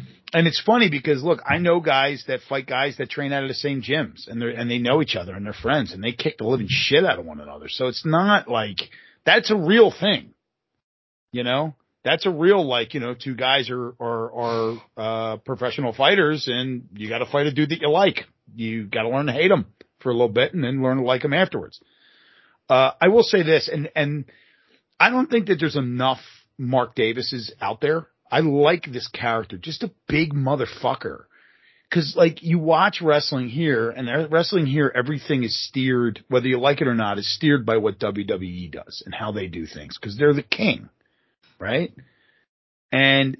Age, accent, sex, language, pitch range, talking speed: 40-59, American, male, English, 115-155 Hz, 205 wpm